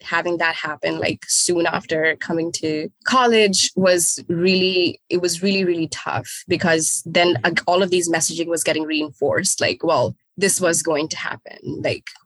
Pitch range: 160-195 Hz